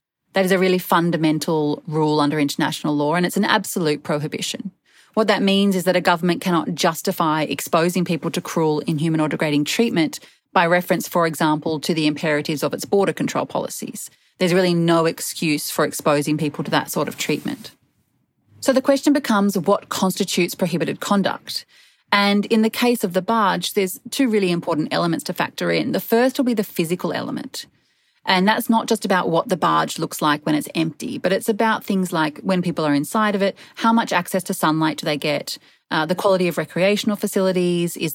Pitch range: 160-205 Hz